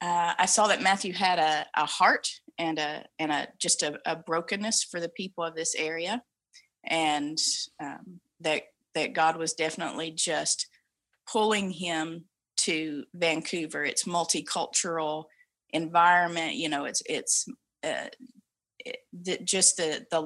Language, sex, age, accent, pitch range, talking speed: English, female, 30-49, American, 155-190 Hz, 140 wpm